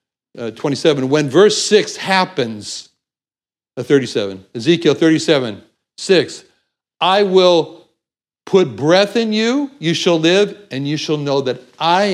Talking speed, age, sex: 130 wpm, 60-79, male